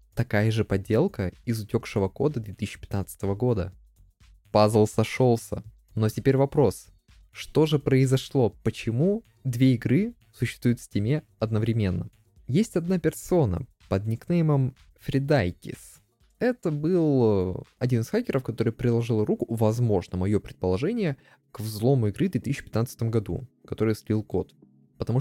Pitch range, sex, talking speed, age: 100-130 Hz, male, 120 wpm, 20-39